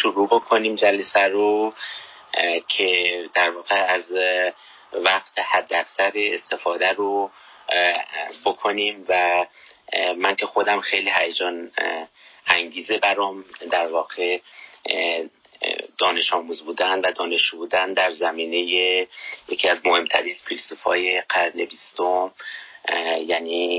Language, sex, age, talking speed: Persian, male, 30-49, 100 wpm